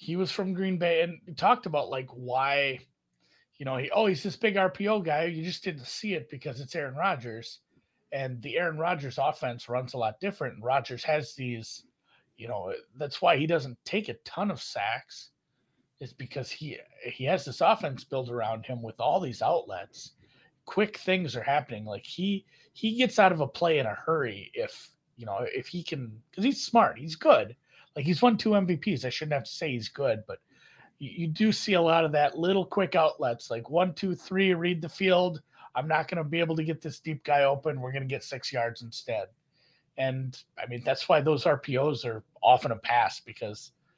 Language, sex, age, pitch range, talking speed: English, male, 30-49, 125-180 Hz, 210 wpm